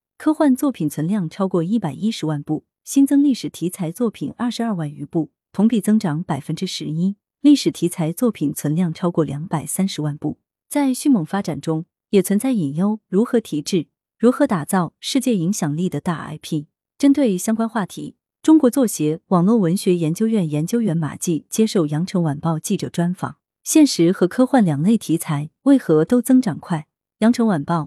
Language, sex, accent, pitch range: Chinese, female, native, 155-220 Hz